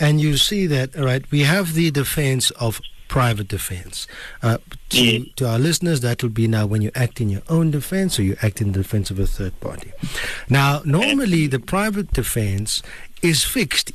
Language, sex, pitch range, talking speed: English, male, 110-150 Hz, 200 wpm